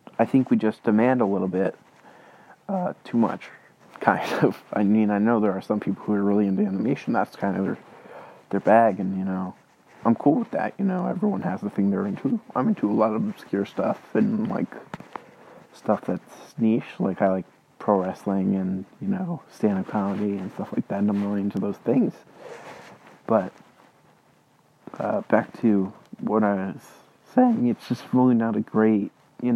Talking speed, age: 190 wpm, 30-49